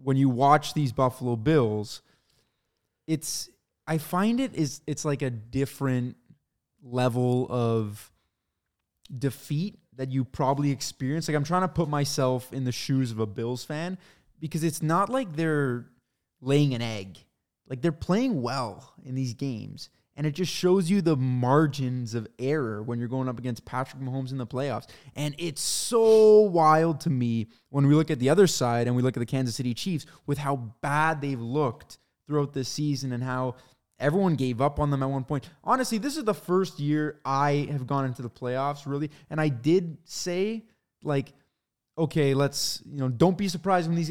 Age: 20-39